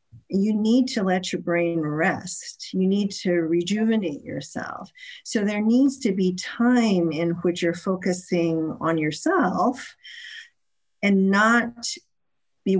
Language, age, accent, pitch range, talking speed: English, 50-69, American, 165-200 Hz, 125 wpm